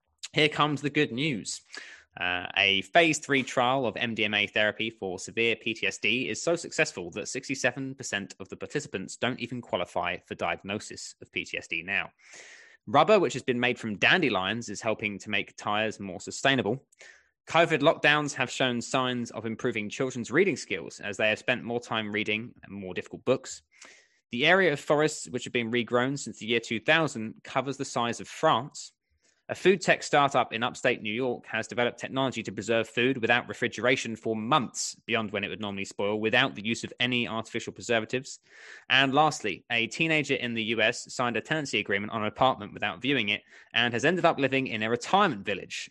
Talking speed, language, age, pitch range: 185 wpm, English, 20-39, 110-135 Hz